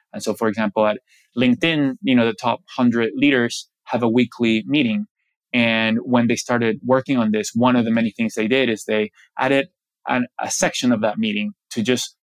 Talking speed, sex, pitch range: 200 wpm, male, 110-135 Hz